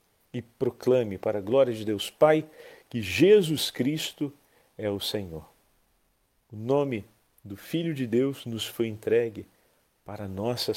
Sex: male